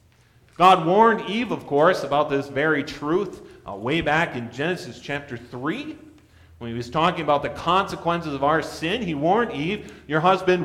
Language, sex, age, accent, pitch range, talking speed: English, male, 40-59, American, 125-175 Hz, 175 wpm